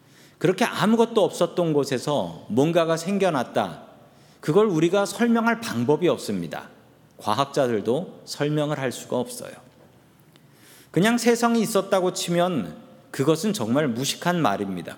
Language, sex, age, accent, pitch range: Korean, male, 40-59, native, 145-215 Hz